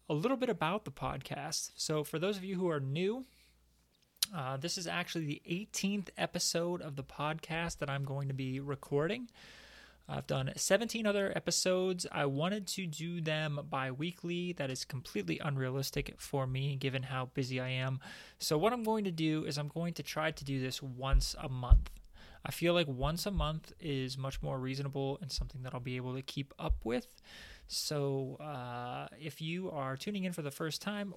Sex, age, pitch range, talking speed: male, 20-39, 135-175 Hz, 195 wpm